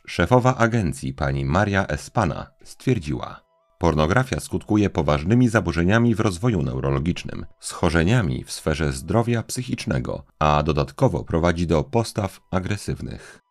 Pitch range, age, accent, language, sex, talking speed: 80-120 Hz, 40-59, native, Polish, male, 105 wpm